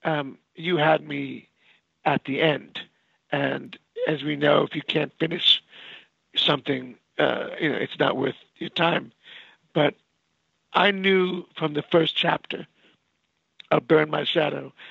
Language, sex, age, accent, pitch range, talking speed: English, male, 50-69, American, 145-175 Hz, 140 wpm